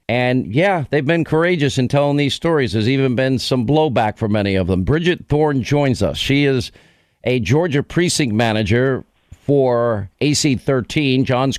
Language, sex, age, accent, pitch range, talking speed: English, male, 50-69, American, 115-135 Hz, 160 wpm